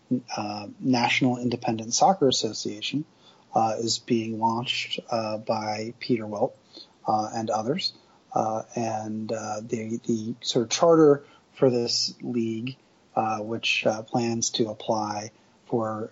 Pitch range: 110-125 Hz